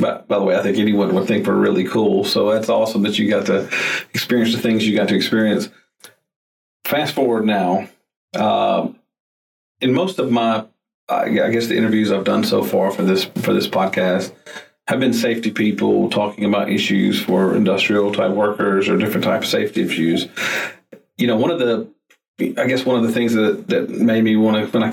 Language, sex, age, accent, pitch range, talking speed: English, male, 40-59, American, 105-120 Hz, 200 wpm